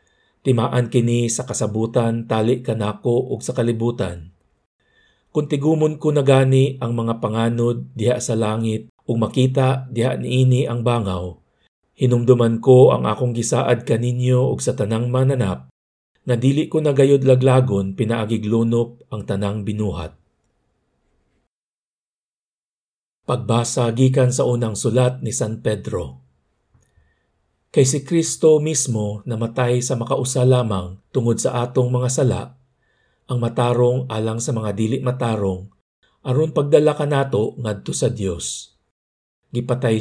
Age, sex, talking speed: 50-69, male, 120 wpm